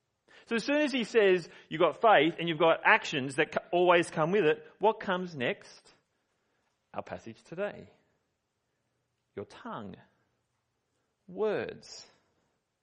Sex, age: male, 40-59